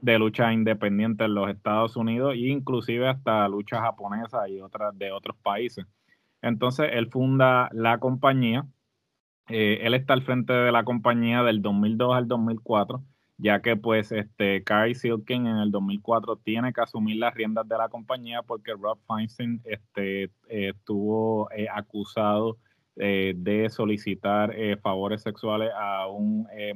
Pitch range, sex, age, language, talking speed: 105-115 Hz, male, 20-39, Spanish, 155 wpm